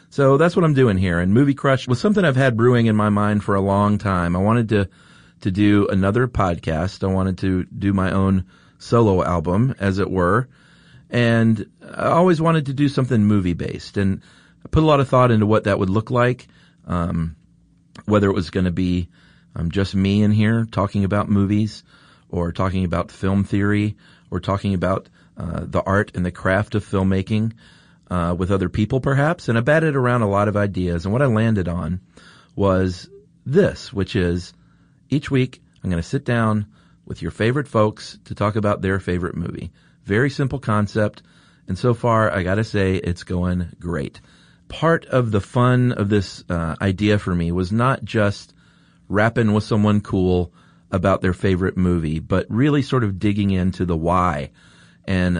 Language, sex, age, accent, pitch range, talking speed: English, male, 40-59, American, 90-115 Hz, 190 wpm